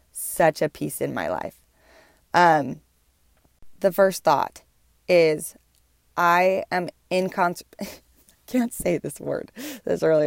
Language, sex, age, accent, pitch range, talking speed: English, female, 20-39, American, 150-190 Hz, 130 wpm